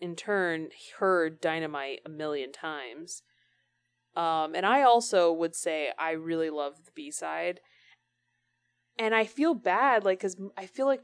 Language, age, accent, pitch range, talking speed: English, 20-39, American, 155-195 Hz, 150 wpm